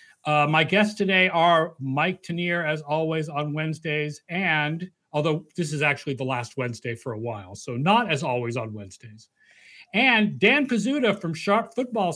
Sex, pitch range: male, 155-200 Hz